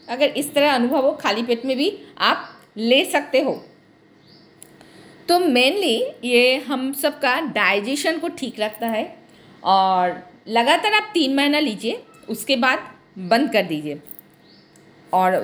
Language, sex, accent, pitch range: Hindi, female, native, 230-315 Hz